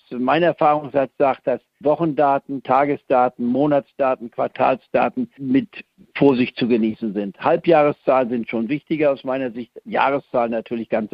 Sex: male